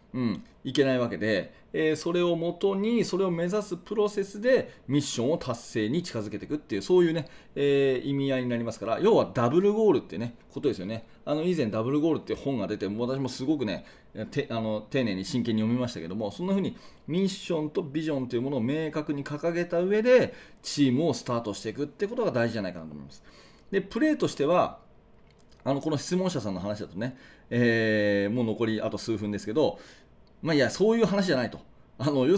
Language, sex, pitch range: Japanese, male, 115-175 Hz